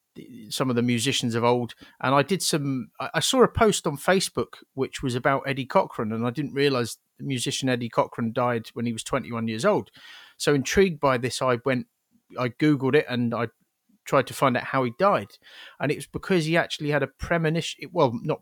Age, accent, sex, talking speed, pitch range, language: 30-49, British, male, 210 wpm, 125-150 Hz, English